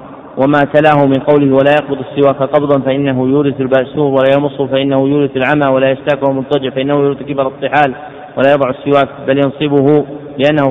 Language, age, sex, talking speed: Arabic, 40-59, male, 165 wpm